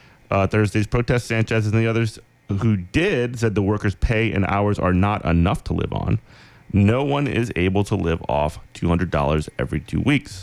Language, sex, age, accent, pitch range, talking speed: English, male, 30-49, American, 90-115 Hz, 195 wpm